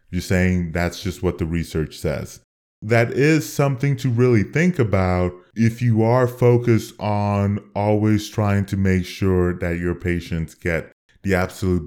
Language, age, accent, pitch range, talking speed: English, 20-39, American, 90-115 Hz, 155 wpm